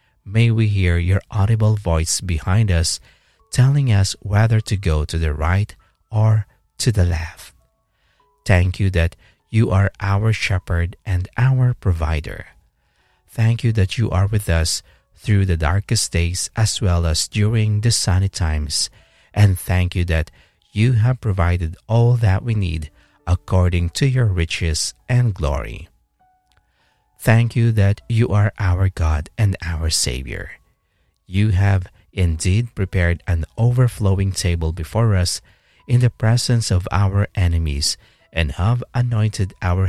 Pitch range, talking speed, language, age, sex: 85-110 Hz, 140 wpm, English, 50-69, male